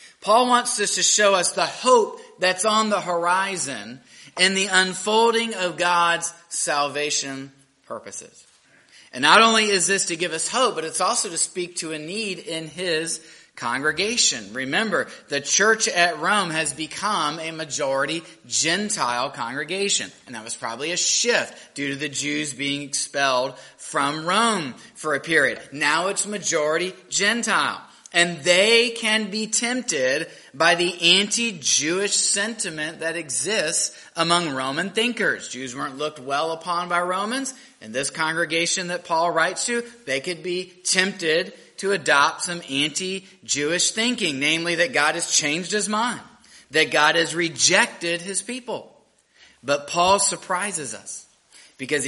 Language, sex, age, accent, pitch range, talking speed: English, male, 30-49, American, 150-200 Hz, 145 wpm